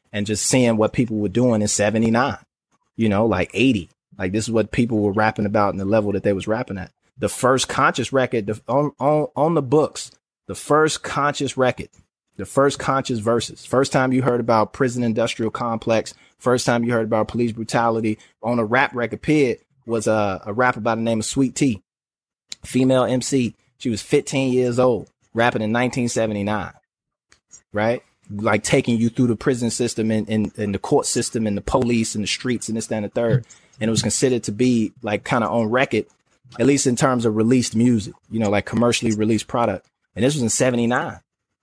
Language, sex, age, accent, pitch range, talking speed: English, male, 30-49, American, 110-125 Hz, 205 wpm